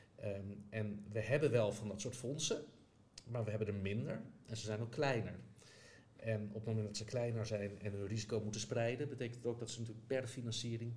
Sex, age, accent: male, 50-69, Dutch